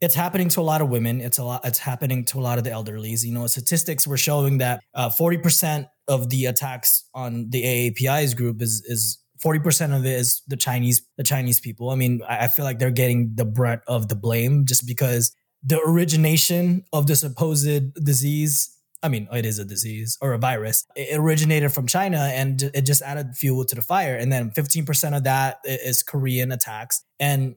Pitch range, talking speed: 125-165 Hz, 205 wpm